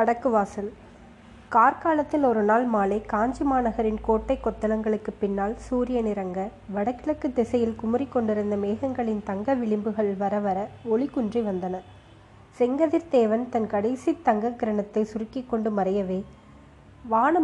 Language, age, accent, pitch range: Tamil, 20-39, native, 210-255 Hz